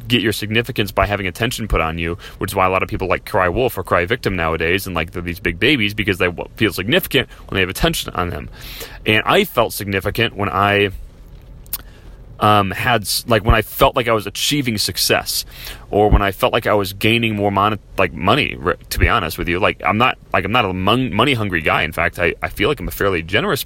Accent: American